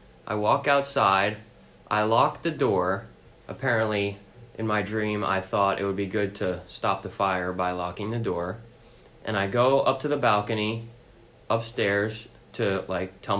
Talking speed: 160 wpm